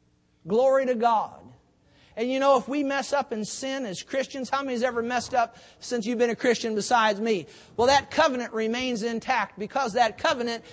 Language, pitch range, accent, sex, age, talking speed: English, 225-285 Hz, American, male, 50-69, 190 wpm